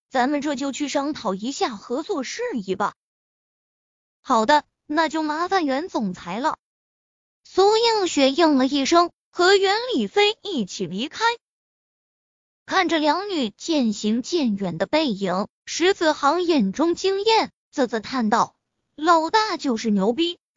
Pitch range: 240-345 Hz